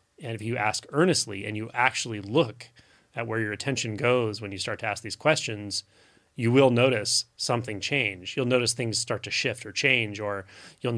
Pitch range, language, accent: 105-130 Hz, English, American